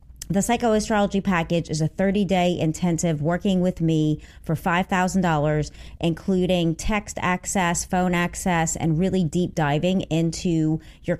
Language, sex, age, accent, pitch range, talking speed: English, female, 30-49, American, 160-195 Hz, 125 wpm